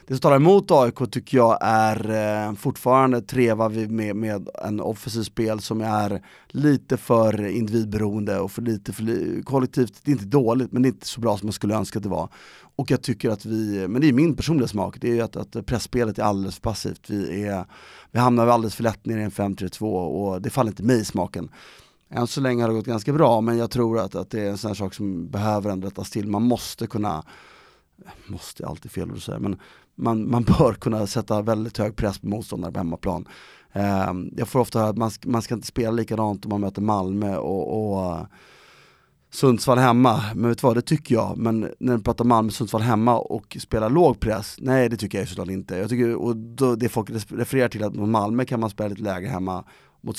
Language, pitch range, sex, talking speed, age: Swedish, 105-120 Hz, male, 220 wpm, 30-49